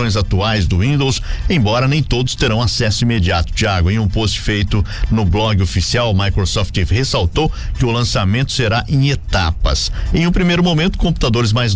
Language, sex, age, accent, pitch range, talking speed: Portuguese, male, 50-69, Brazilian, 95-115 Hz, 170 wpm